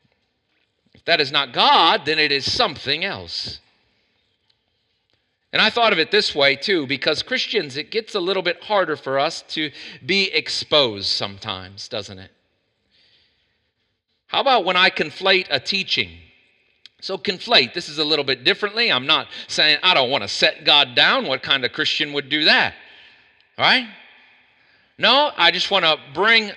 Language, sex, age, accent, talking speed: English, male, 40-59, American, 165 wpm